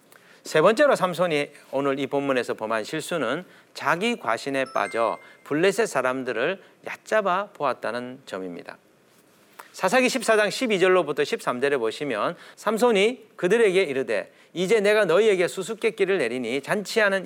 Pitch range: 135-210 Hz